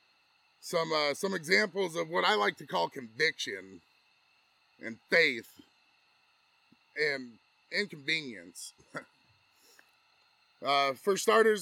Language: English